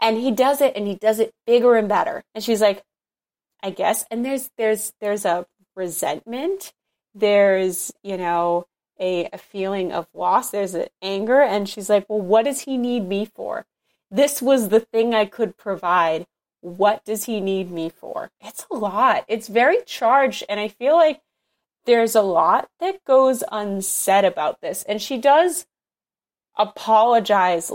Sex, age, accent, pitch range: female, 30-49, American, 195-265 Hz